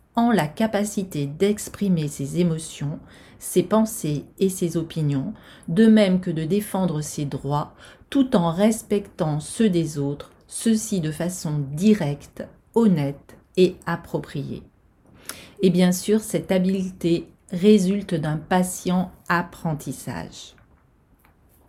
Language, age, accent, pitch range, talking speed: French, 40-59, French, 165-200 Hz, 110 wpm